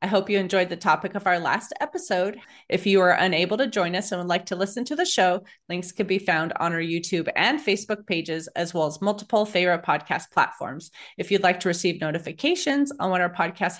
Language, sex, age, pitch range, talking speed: English, female, 30-49, 170-220 Hz, 225 wpm